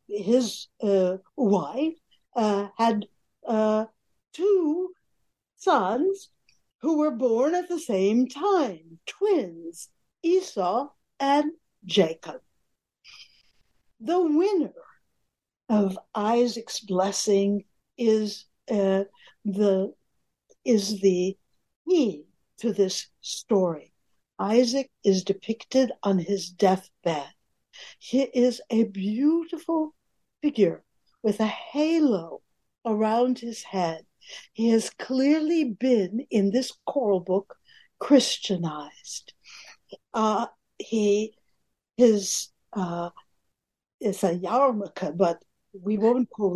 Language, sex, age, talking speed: English, female, 60-79, 90 wpm